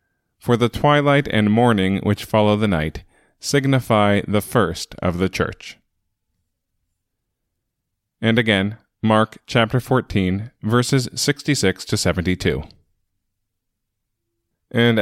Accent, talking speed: American, 100 wpm